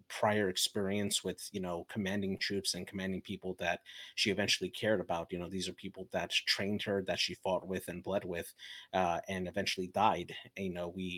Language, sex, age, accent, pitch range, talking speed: English, male, 30-49, American, 90-100 Hz, 205 wpm